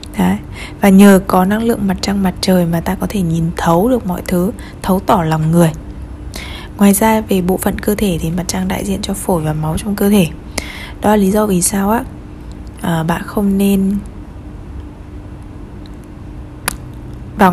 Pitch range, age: 160-200 Hz, 20-39